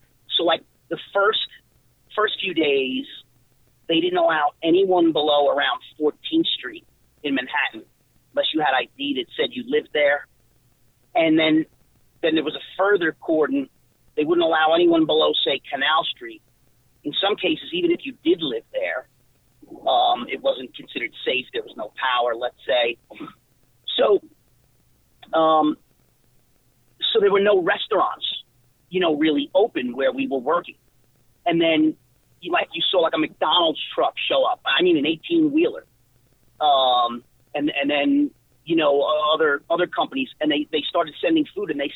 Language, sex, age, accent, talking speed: English, male, 40-59, American, 160 wpm